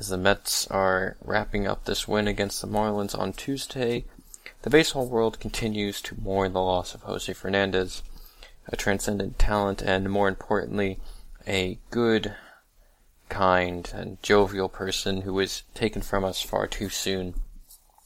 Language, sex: English, male